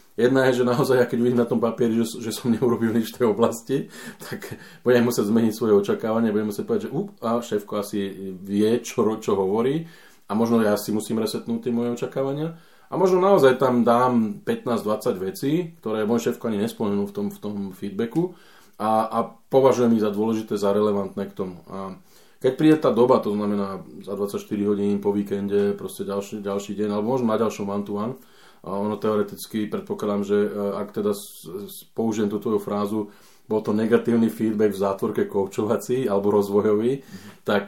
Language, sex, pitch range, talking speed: Slovak, male, 105-120 Hz, 175 wpm